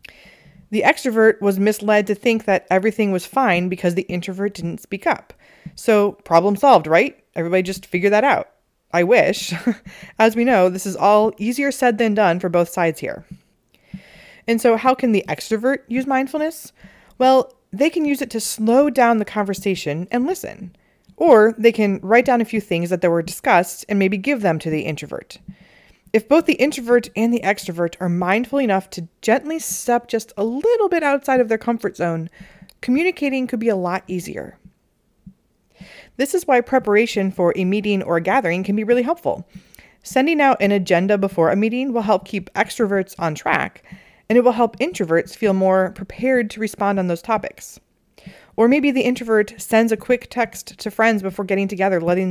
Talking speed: 185 wpm